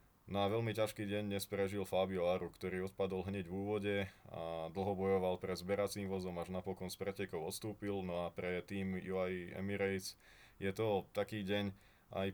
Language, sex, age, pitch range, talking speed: Slovak, male, 20-39, 90-100 Hz, 175 wpm